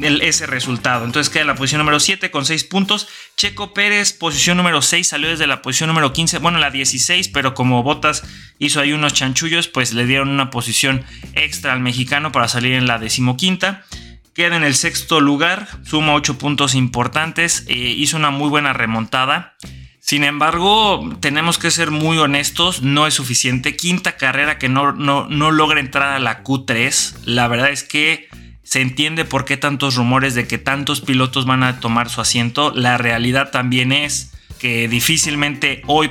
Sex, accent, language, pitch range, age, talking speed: male, Mexican, Spanish, 120-150 Hz, 20-39, 180 wpm